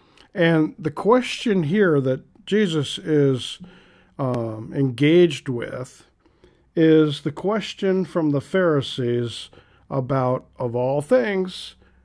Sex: male